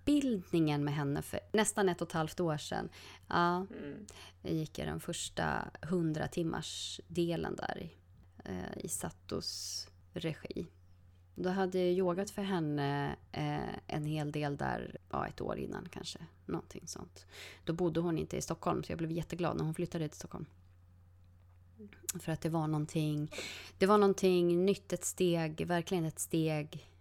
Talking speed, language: 150 wpm, Swedish